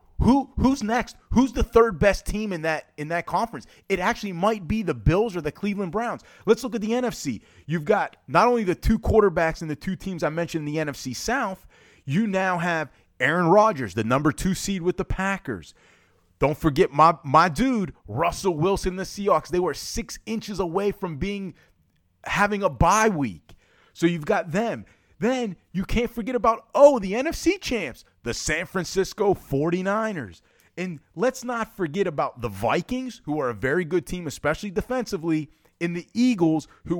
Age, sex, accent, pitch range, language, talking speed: 30-49, male, American, 150-210 Hz, English, 185 wpm